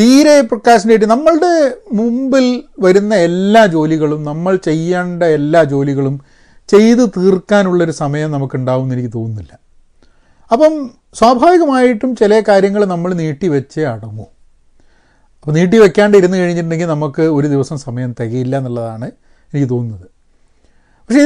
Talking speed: 110 wpm